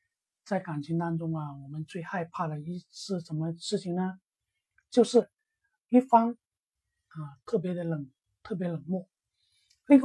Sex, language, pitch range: male, Chinese, 145-230 Hz